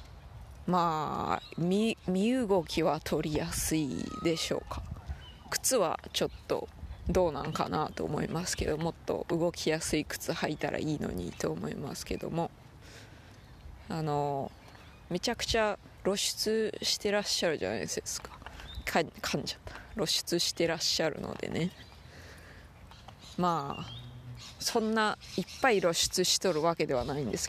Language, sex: Japanese, female